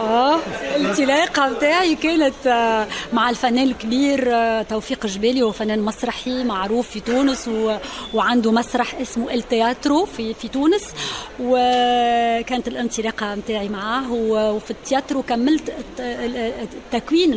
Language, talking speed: Arabic, 95 wpm